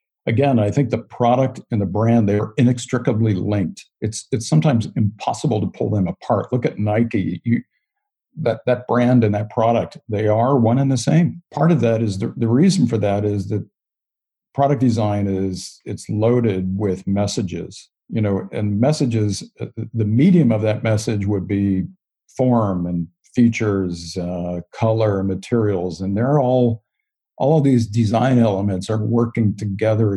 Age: 50-69